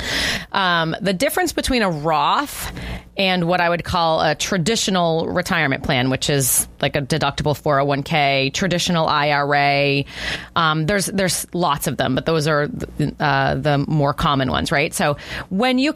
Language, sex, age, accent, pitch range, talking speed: English, female, 30-49, American, 150-180 Hz, 160 wpm